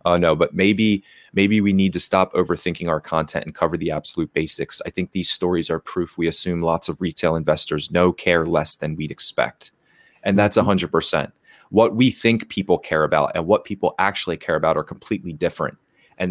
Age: 30-49